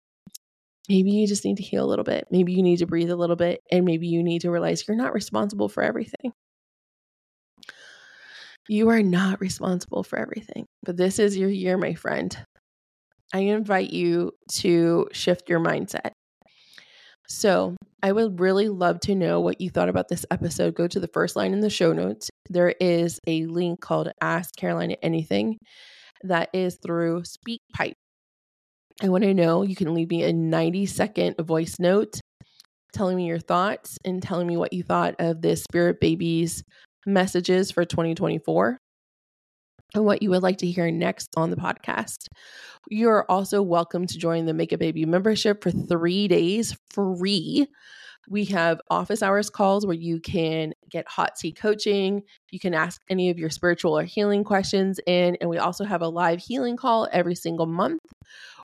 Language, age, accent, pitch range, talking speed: English, 20-39, American, 170-200 Hz, 180 wpm